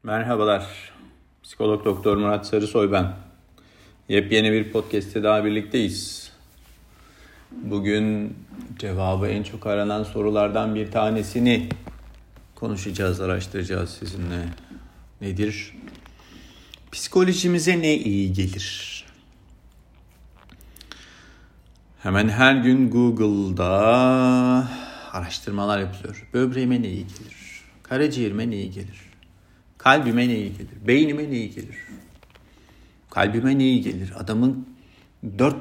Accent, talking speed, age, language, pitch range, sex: native, 95 wpm, 50-69, Turkish, 95-120 Hz, male